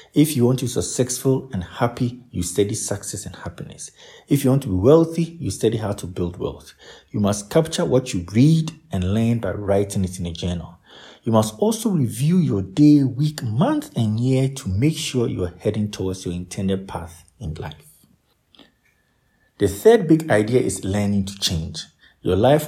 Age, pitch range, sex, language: 50-69, 95-135 Hz, male, English